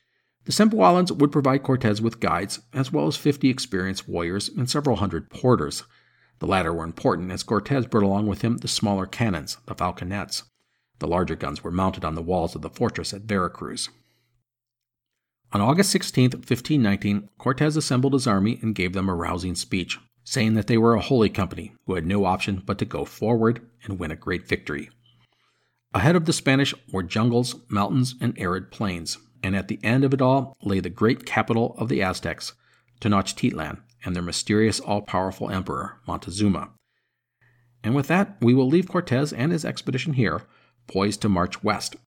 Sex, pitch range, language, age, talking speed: male, 95-130 Hz, English, 50-69, 180 wpm